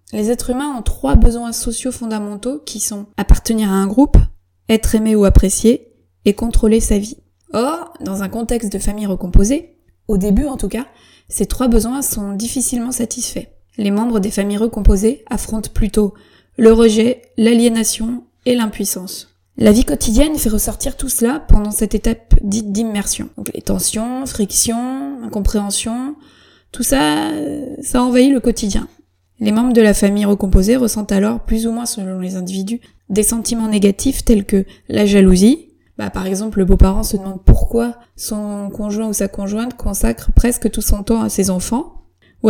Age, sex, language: 20-39, female, French